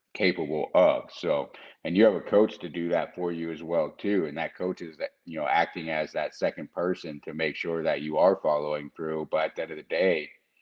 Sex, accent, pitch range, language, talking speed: male, American, 80-95 Hz, English, 245 wpm